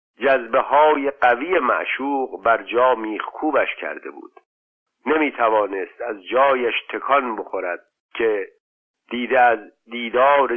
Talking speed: 90 wpm